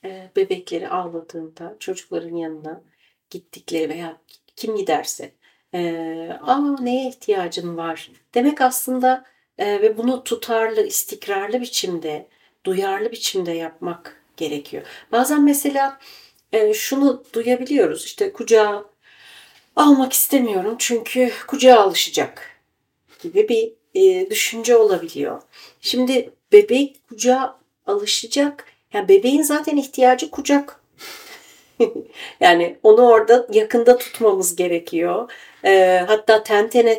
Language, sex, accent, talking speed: Turkish, female, native, 90 wpm